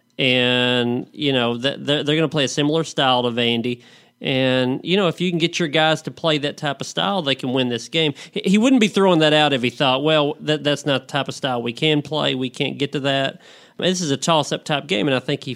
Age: 40-59